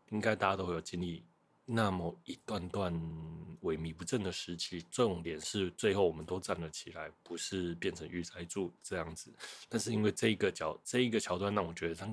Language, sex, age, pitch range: Chinese, male, 20-39, 85-100 Hz